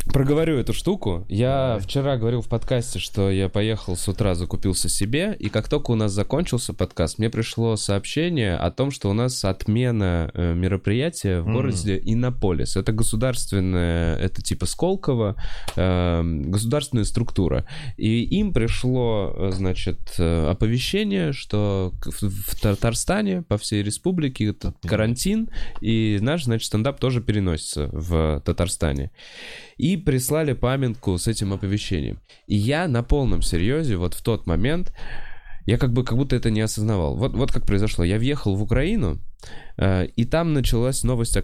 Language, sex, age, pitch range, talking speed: Russian, male, 20-39, 90-125 Hz, 145 wpm